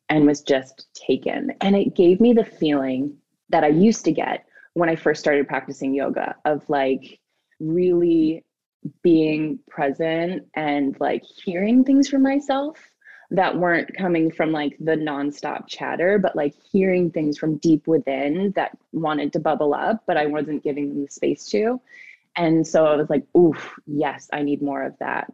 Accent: American